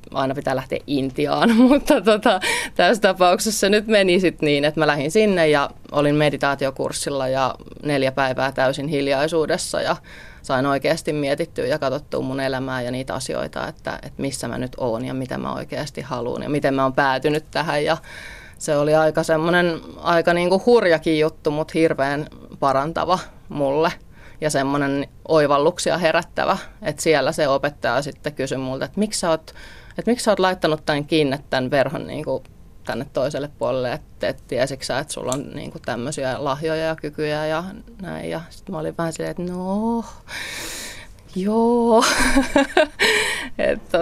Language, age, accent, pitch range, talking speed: Finnish, 30-49, native, 140-180 Hz, 160 wpm